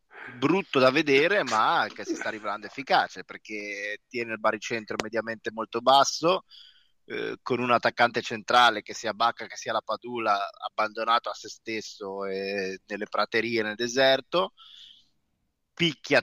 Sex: male